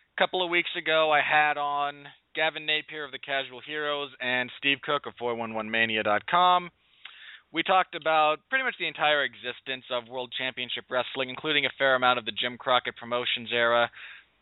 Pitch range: 125-170 Hz